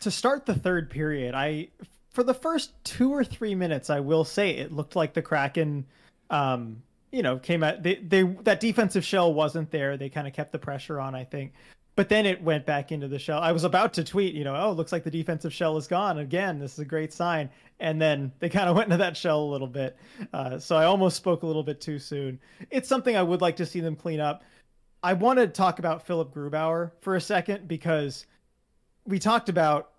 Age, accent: 30-49, American